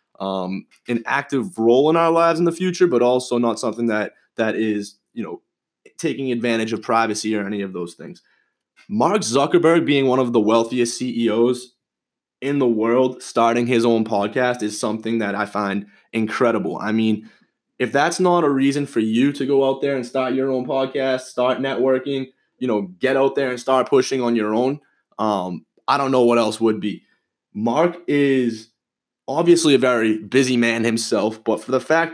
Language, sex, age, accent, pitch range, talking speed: English, male, 20-39, American, 115-140 Hz, 185 wpm